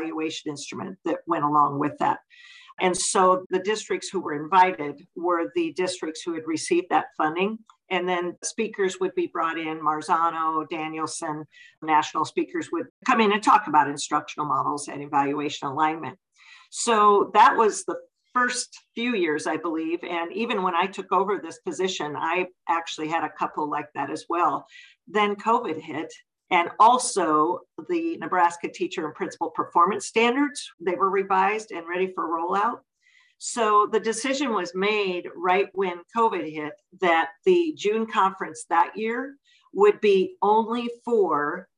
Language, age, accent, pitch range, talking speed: English, 50-69, American, 170-230 Hz, 155 wpm